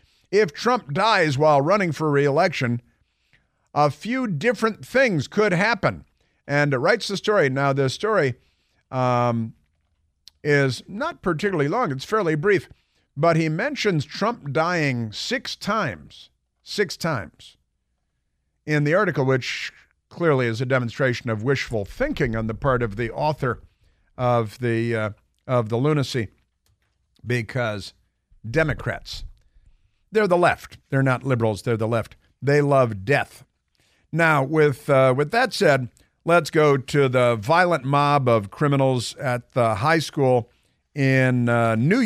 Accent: American